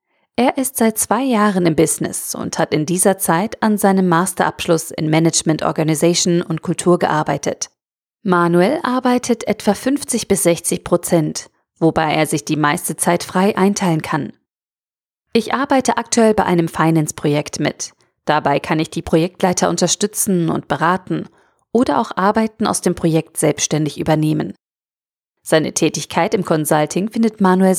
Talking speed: 145 wpm